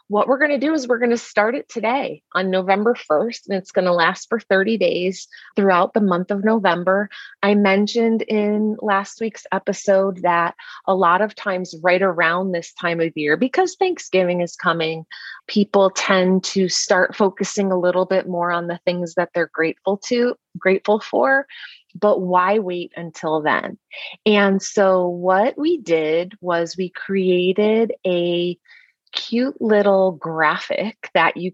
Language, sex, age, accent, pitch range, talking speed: English, female, 30-49, American, 175-210 Hz, 165 wpm